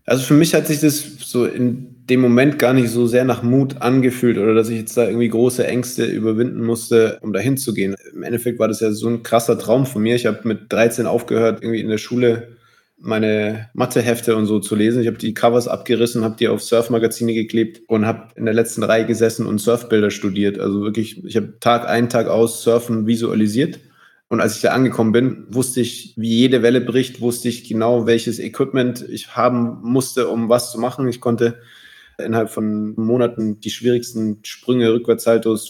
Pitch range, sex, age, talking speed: 110-120 Hz, male, 20-39, 200 wpm